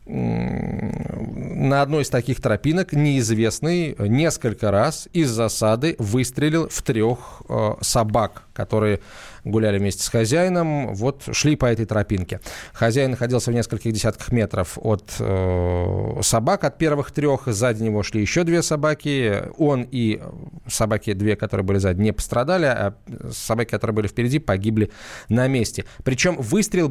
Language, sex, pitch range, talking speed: Russian, male, 105-145 Hz, 135 wpm